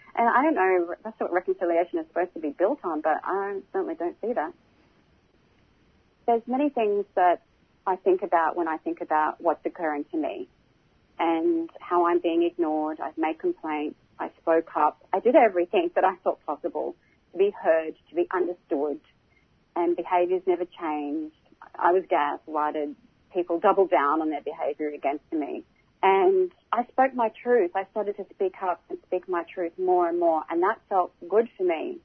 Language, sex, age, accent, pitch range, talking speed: English, female, 40-59, Australian, 170-235 Hz, 185 wpm